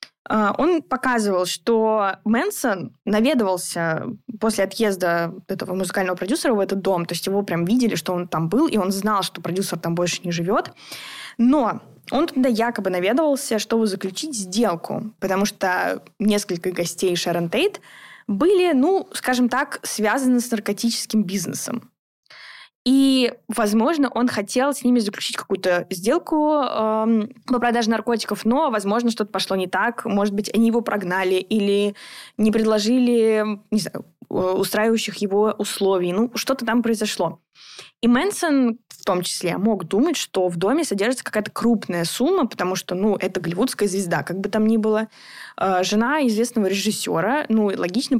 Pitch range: 190-240 Hz